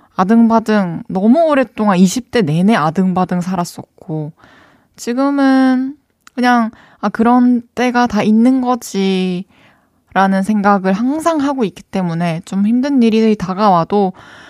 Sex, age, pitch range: female, 20-39, 185-245 Hz